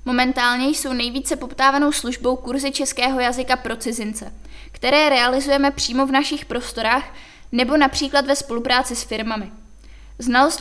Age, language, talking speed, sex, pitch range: 20-39, Czech, 130 wpm, female, 245-275 Hz